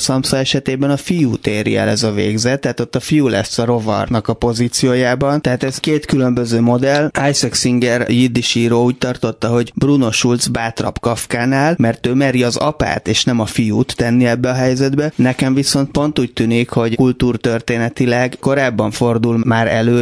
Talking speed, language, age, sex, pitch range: 170 wpm, Hungarian, 20-39, male, 115-130 Hz